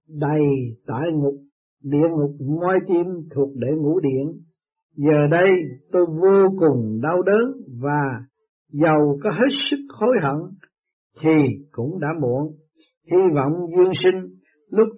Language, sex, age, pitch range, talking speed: Vietnamese, male, 60-79, 140-190 Hz, 135 wpm